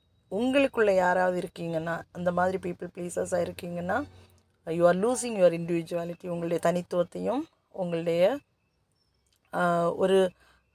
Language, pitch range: Tamil, 170-200 Hz